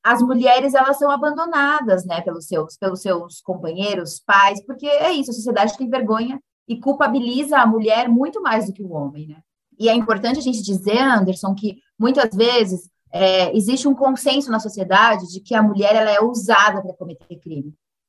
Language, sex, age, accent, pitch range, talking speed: Portuguese, female, 20-39, Brazilian, 200-270 Hz, 185 wpm